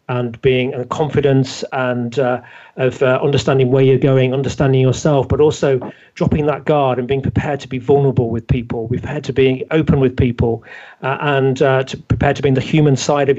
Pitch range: 130-155 Hz